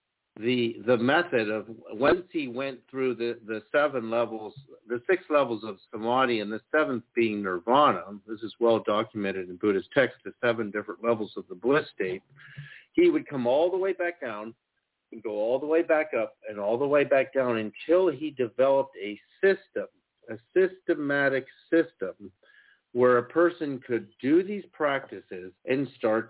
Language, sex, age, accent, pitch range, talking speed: English, male, 50-69, American, 110-165 Hz, 170 wpm